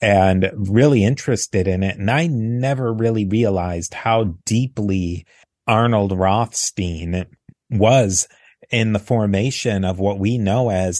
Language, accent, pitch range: English, American, 100-125 Hz